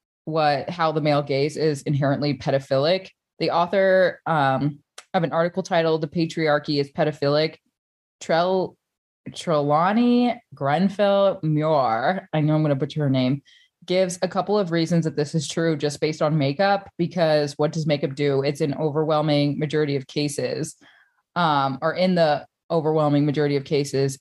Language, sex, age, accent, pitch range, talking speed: English, female, 20-39, American, 145-170 Hz, 155 wpm